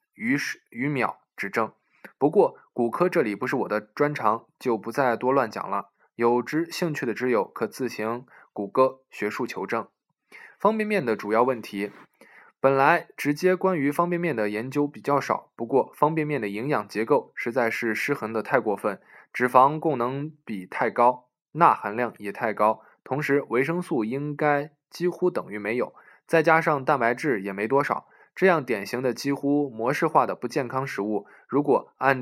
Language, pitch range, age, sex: Chinese, 115-150 Hz, 20-39, male